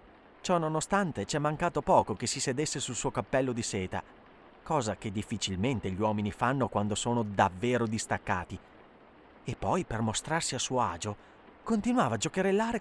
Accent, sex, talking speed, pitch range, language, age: native, male, 160 wpm, 105-160 Hz, Italian, 30-49